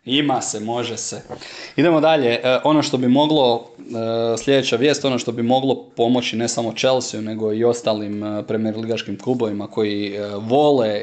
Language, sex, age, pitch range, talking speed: Croatian, male, 20-39, 105-115 Hz, 145 wpm